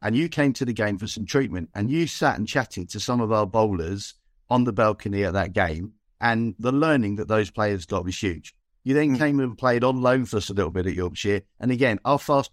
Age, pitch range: 50-69, 105-140 Hz